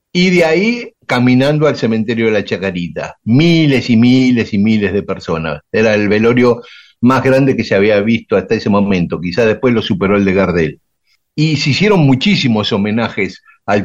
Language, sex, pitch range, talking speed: Spanish, male, 100-130 Hz, 180 wpm